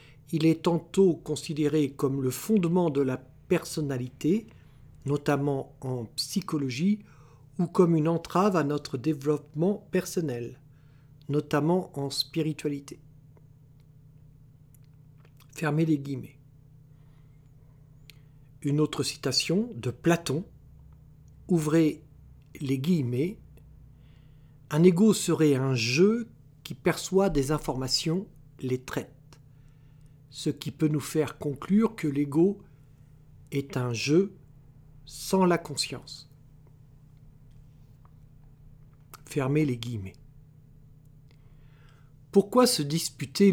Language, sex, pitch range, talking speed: French, male, 140-160 Hz, 90 wpm